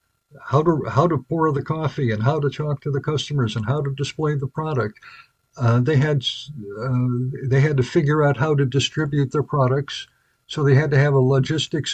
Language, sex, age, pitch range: English, male, 60-79, 125-145 Hz